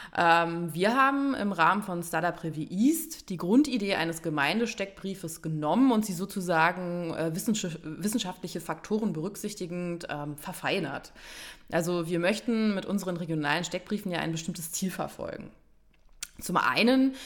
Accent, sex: German, female